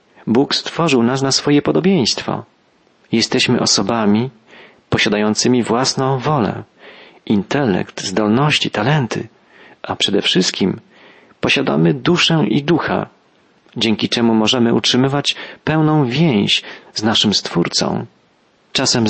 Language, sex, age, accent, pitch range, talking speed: Polish, male, 40-59, native, 110-140 Hz, 95 wpm